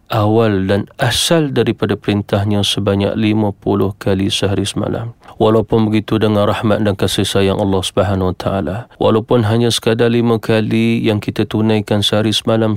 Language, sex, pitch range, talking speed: Malay, male, 100-115 Hz, 150 wpm